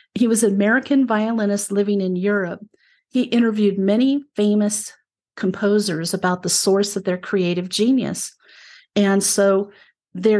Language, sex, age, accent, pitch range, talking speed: English, female, 50-69, American, 190-235 Hz, 135 wpm